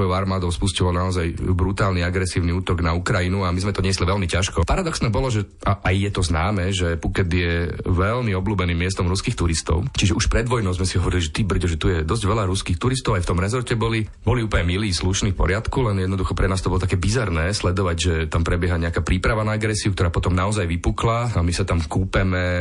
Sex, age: male, 30-49